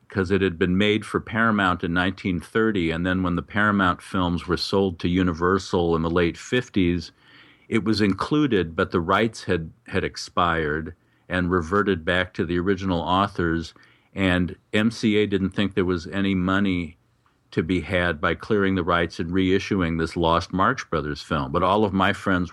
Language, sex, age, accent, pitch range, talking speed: English, male, 50-69, American, 85-95 Hz, 175 wpm